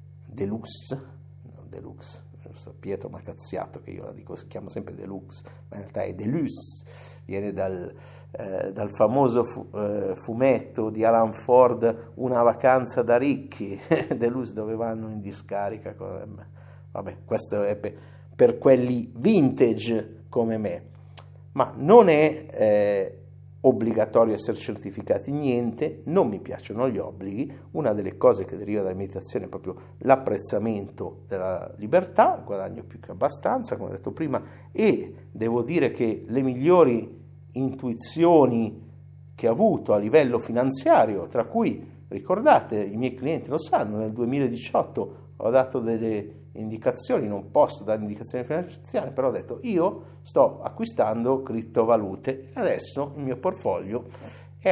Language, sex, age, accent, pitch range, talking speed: Italian, male, 50-69, native, 105-130 Hz, 140 wpm